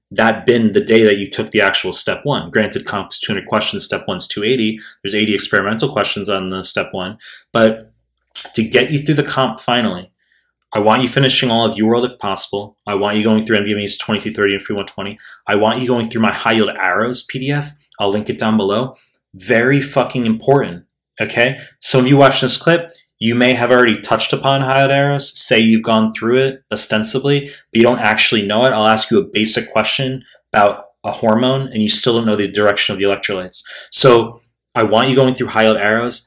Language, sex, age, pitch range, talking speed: English, male, 20-39, 105-130 Hz, 205 wpm